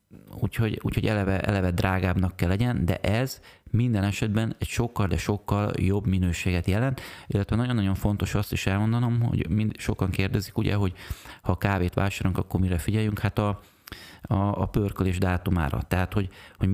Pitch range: 90-105 Hz